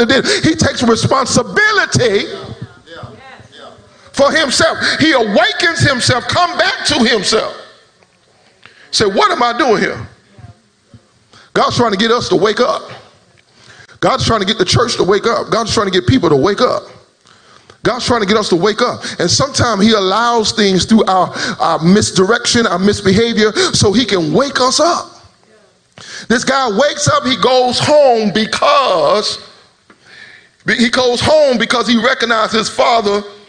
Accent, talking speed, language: American, 150 wpm, English